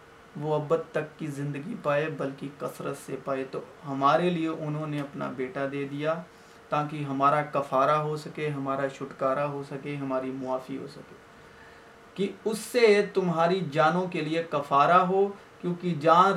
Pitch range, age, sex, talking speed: 145-185 Hz, 40-59, male, 160 wpm